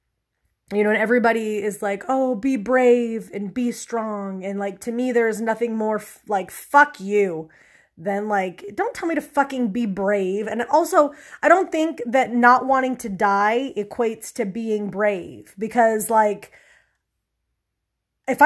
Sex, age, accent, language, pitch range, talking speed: female, 20-39, American, English, 200-245 Hz, 155 wpm